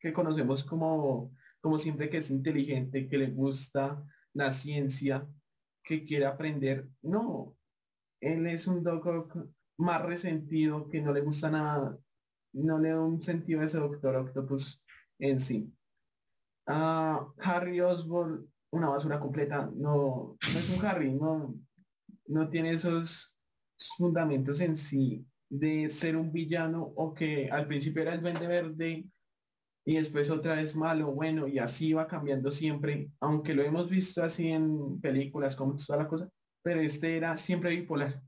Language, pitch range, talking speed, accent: Spanish, 140-165 Hz, 150 wpm, Colombian